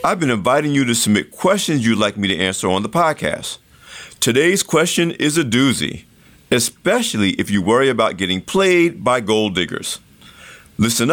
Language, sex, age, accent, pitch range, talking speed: English, male, 50-69, American, 110-165 Hz, 165 wpm